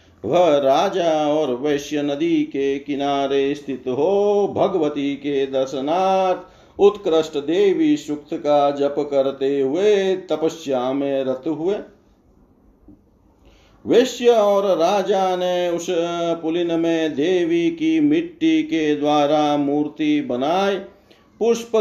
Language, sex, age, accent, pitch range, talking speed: Hindi, male, 50-69, native, 135-165 Hz, 105 wpm